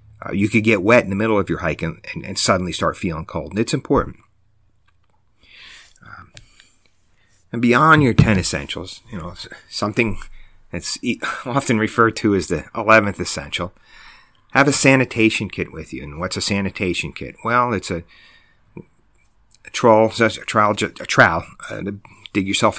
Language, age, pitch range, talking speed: English, 40-59, 90-110 Hz, 160 wpm